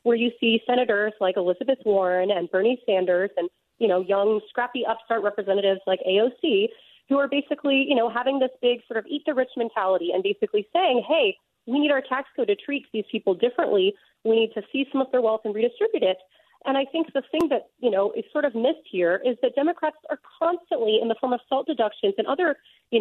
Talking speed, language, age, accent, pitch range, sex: 220 wpm, English, 30-49, American, 205-295 Hz, female